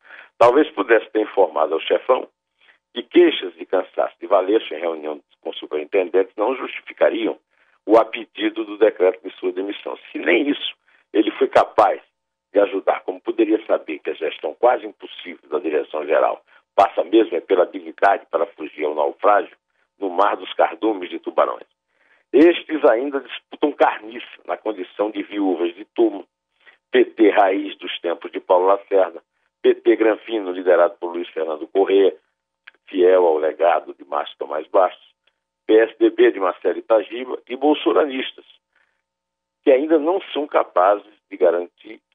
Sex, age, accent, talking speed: male, 60-79, Brazilian, 145 wpm